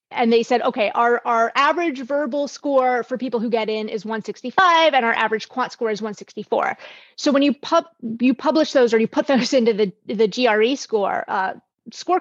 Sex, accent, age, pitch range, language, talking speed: female, American, 30-49, 220-270 Hz, English, 200 wpm